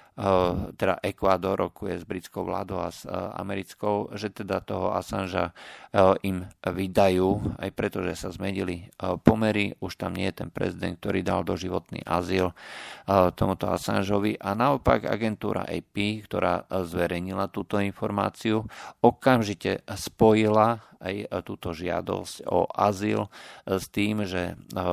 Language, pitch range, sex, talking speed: Slovak, 90-105 Hz, male, 120 wpm